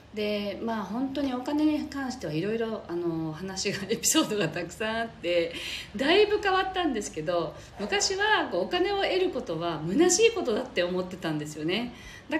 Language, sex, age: Japanese, female, 40-59